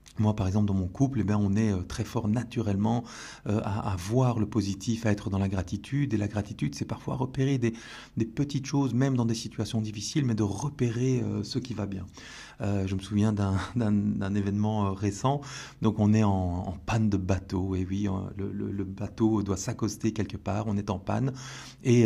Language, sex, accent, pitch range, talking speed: French, male, French, 100-120 Hz, 215 wpm